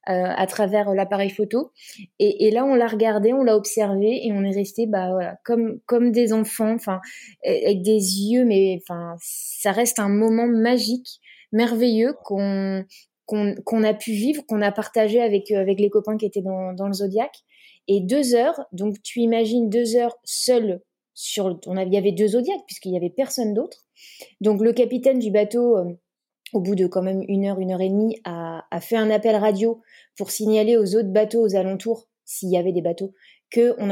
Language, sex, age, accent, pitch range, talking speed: French, female, 20-39, French, 190-230 Hz, 205 wpm